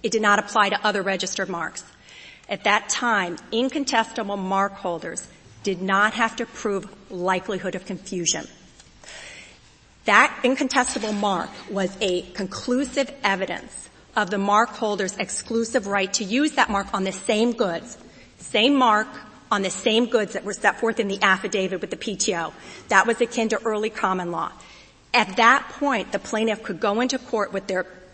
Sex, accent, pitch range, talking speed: female, American, 195-245 Hz, 160 wpm